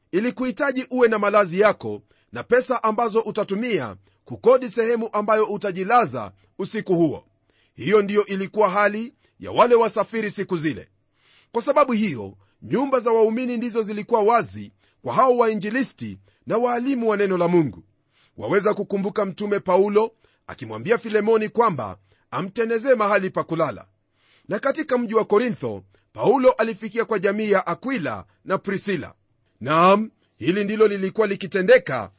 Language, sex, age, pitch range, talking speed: Swahili, male, 40-59, 160-225 Hz, 130 wpm